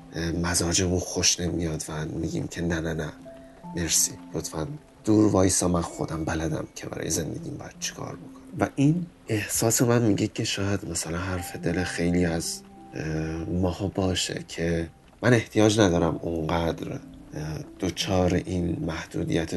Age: 30-49